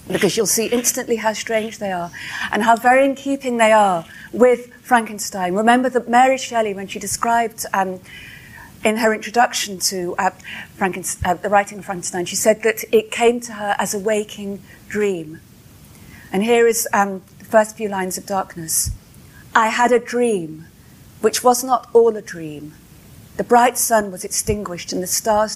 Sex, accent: female, British